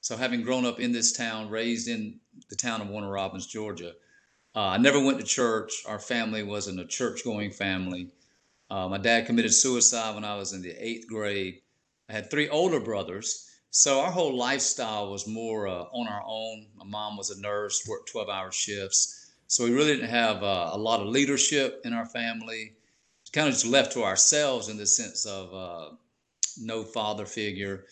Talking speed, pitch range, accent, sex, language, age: 195 wpm, 100-120 Hz, American, male, English, 50-69